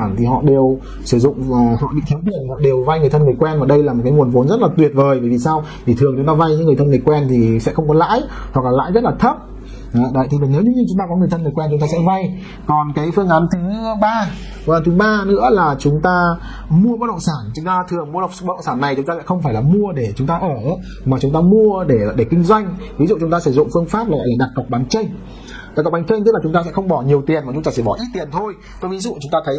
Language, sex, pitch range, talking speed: Vietnamese, male, 135-185 Hz, 305 wpm